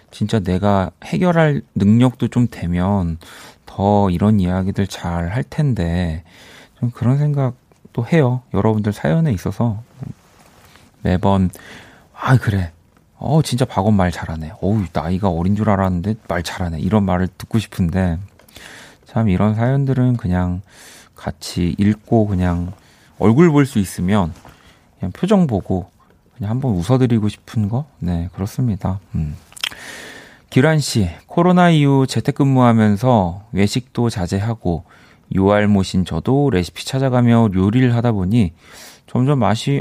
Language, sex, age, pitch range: Korean, male, 30-49, 90-125 Hz